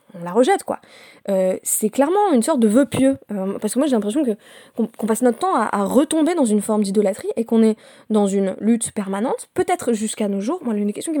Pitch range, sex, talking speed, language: 200-250 Hz, female, 255 wpm, French